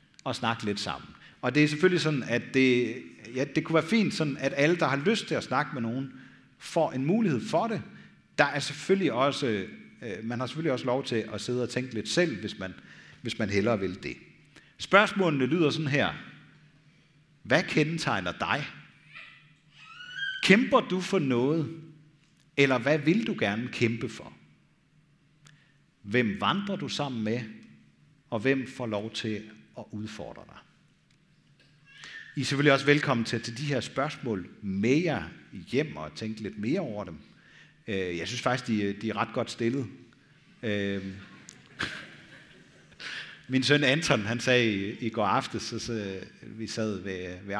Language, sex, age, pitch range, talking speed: Danish, male, 50-69, 110-155 Hz, 160 wpm